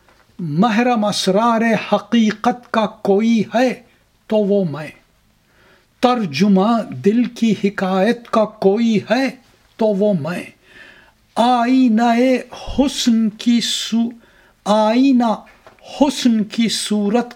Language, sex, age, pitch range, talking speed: English, male, 60-79, 190-235 Hz, 90 wpm